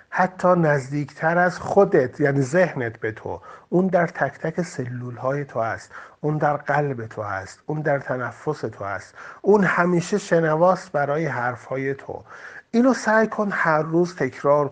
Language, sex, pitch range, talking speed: Persian, male, 135-180 Hz, 160 wpm